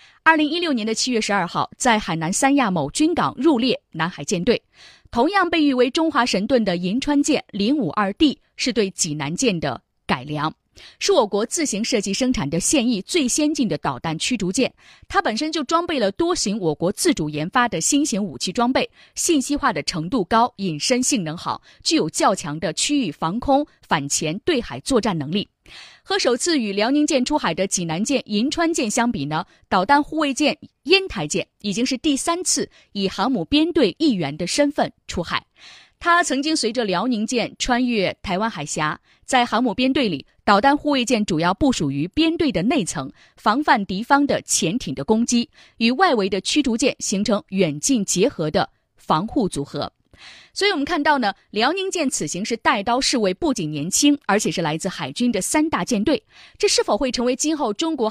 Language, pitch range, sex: Chinese, 190-290 Hz, female